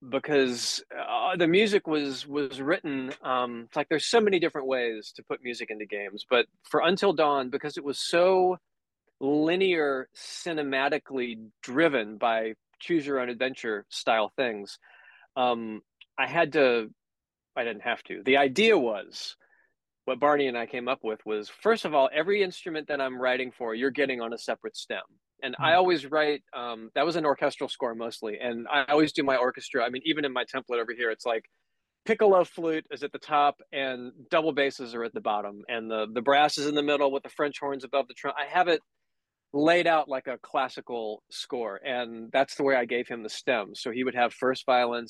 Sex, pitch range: male, 120-155 Hz